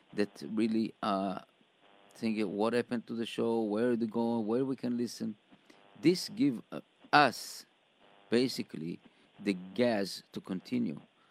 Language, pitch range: English, 100-115 Hz